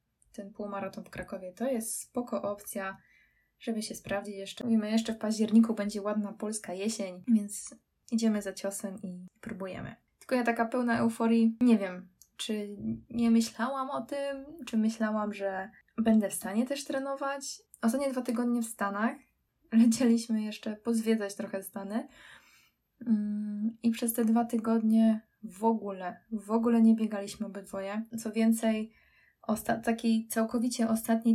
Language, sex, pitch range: Polish, female, 210-235 Hz